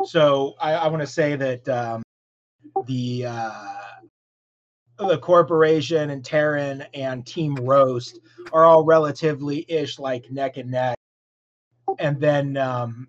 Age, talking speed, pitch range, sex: 30-49, 125 wpm, 130-160 Hz, male